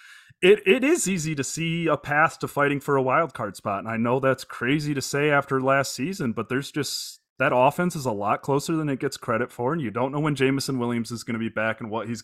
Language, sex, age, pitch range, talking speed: English, male, 30-49, 120-145 Hz, 270 wpm